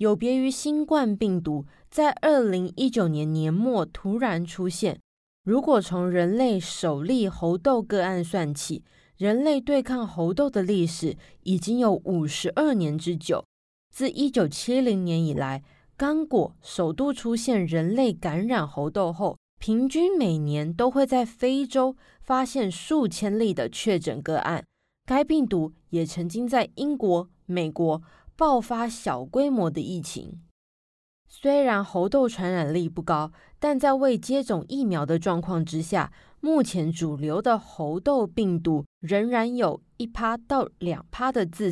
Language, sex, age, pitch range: Chinese, female, 20-39, 170-260 Hz